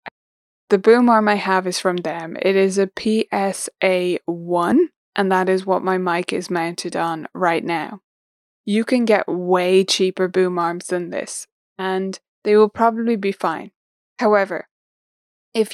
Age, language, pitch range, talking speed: 20-39, English, 180-215 Hz, 155 wpm